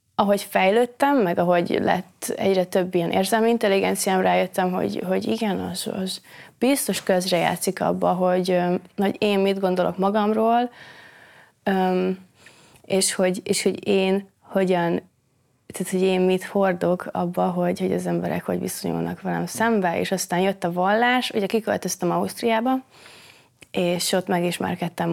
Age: 20-39